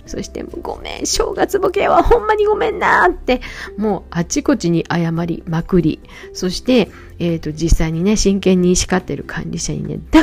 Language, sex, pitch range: Japanese, female, 145-240 Hz